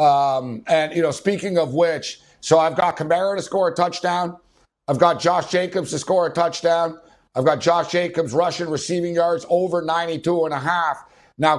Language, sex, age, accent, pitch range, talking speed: English, male, 60-79, American, 150-175 Hz, 185 wpm